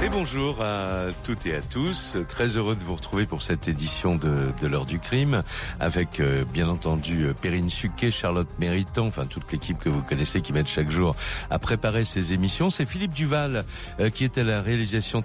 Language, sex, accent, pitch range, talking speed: French, male, French, 85-115 Hz, 200 wpm